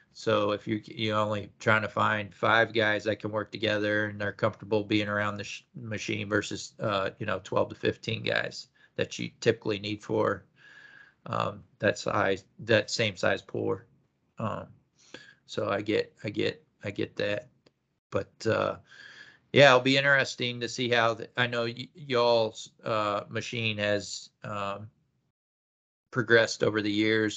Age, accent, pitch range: 40-59, American, 100-115 Hz